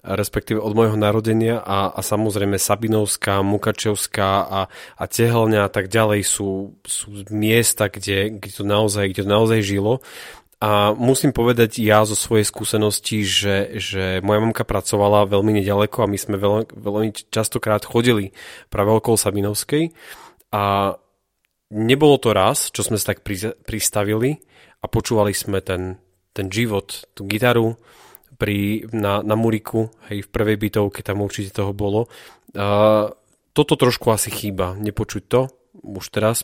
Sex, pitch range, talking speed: male, 100-110 Hz, 145 wpm